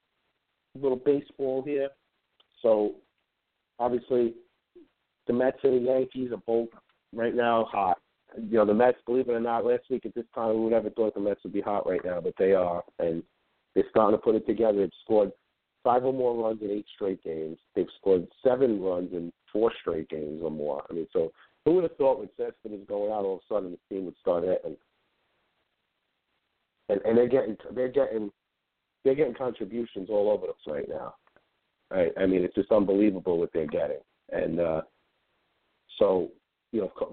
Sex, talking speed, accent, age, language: male, 190 wpm, American, 50-69, English